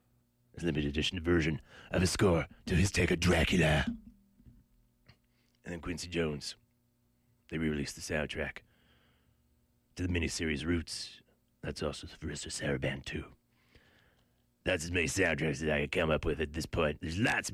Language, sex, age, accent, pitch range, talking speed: English, male, 30-49, American, 70-90 Hz, 150 wpm